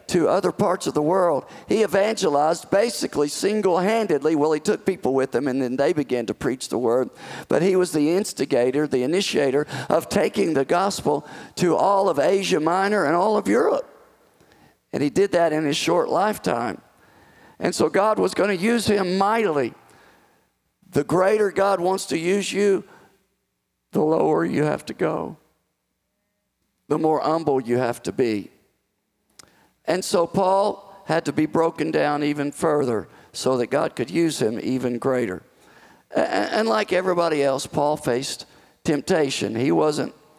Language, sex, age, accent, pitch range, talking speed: English, male, 50-69, American, 135-190 Hz, 160 wpm